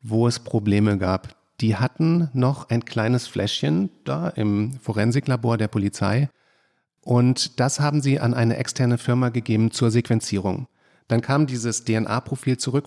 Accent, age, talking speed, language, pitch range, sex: German, 40-59, 145 wpm, German, 110-135 Hz, male